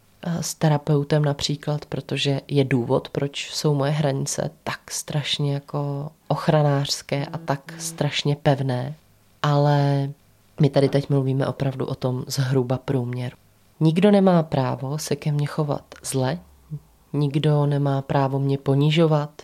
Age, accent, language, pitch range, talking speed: 20-39, native, Czech, 140-160 Hz, 125 wpm